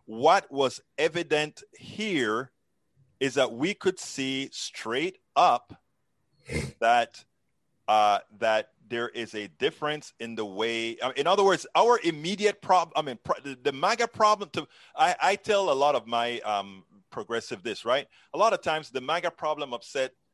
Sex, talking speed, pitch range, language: male, 160 wpm, 120-155 Hz, English